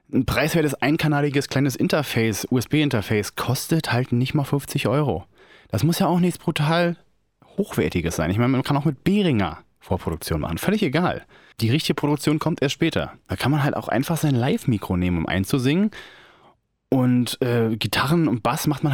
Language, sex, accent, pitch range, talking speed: English, male, German, 110-145 Hz, 175 wpm